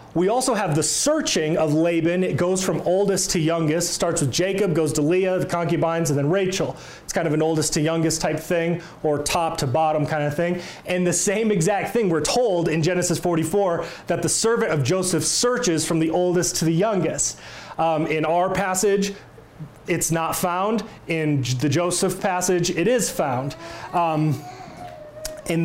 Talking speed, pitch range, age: 180 wpm, 155-185 Hz, 30-49